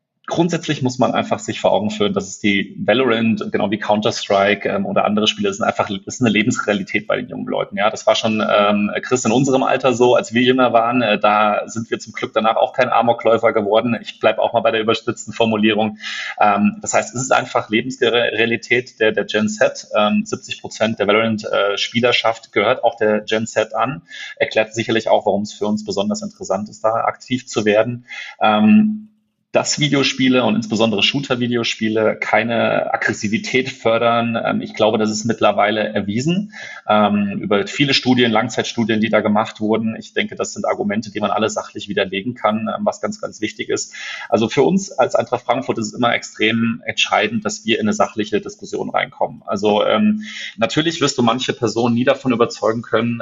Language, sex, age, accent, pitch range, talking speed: German, male, 30-49, German, 110-125 Hz, 190 wpm